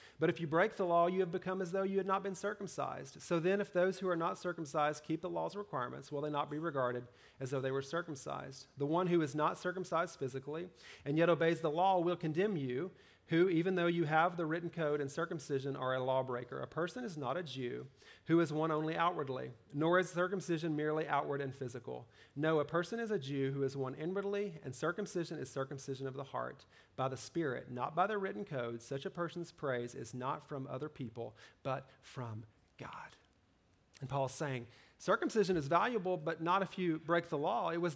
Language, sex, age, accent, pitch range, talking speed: English, male, 40-59, American, 135-180 Hz, 215 wpm